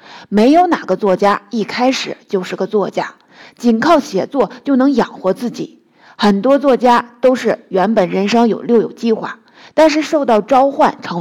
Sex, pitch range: female, 205-270 Hz